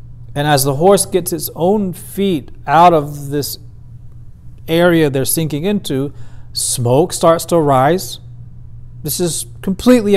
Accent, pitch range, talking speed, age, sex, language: American, 120-155 Hz, 130 wpm, 40-59, male, English